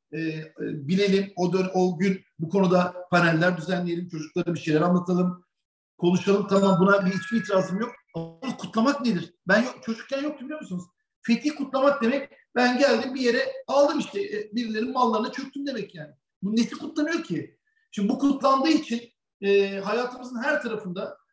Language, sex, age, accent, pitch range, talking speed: Turkish, male, 50-69, native, 180-235 Hz, 160 wpm